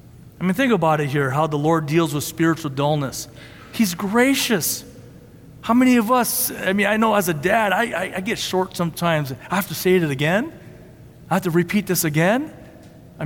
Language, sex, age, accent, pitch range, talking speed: English, male, 40-59, American, 155-195 Hz, 205 wpm